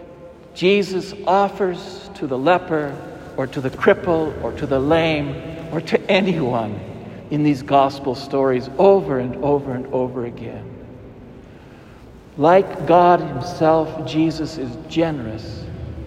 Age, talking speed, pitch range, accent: 60-79, 120 wpm, 125-175 Hz, American